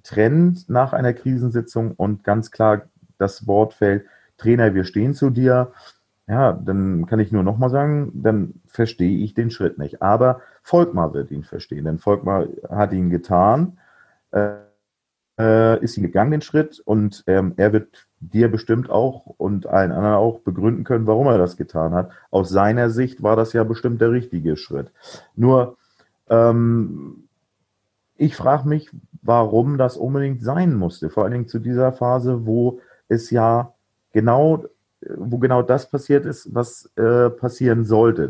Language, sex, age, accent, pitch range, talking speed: German, male, 40-59, German, 95-125 Hz, 160 wpm